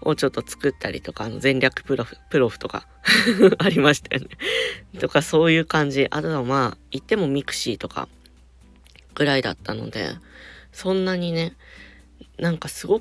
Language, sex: Japanese, female